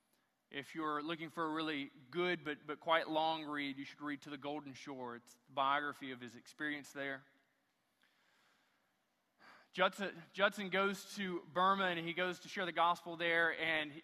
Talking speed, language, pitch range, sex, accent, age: 170 wpm, English, 155-195 Hz, male, American, 20-39